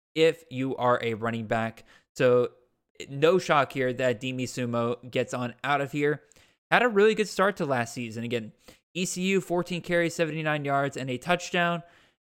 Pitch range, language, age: 125-165 Hz, English, 20-39